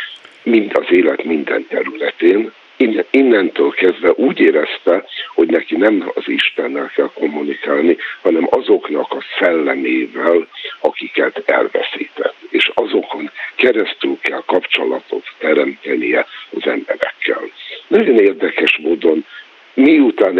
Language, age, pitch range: Hungarian, 60-79, 345-455 Hz